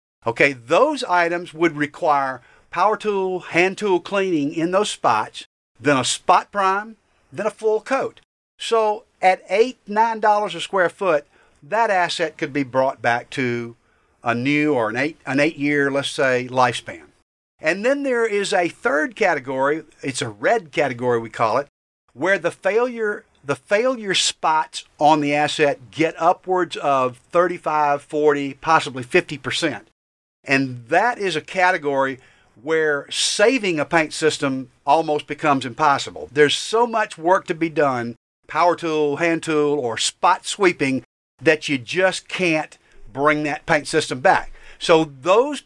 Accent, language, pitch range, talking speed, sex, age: American, English, 140-185 Hz, 150 wpm, male, 50-69